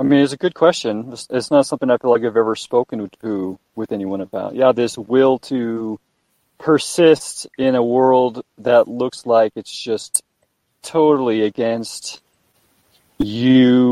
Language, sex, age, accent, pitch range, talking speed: English, male, 30-49, American, 115-145 Hz, 150 wpm